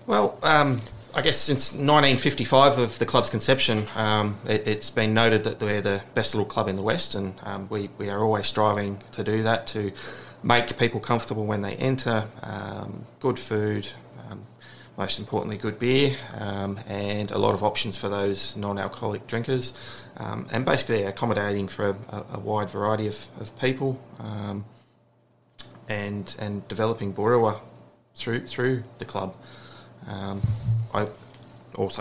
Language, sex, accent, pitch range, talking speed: English, male, Australian, 100-115 Hz, 155 wpm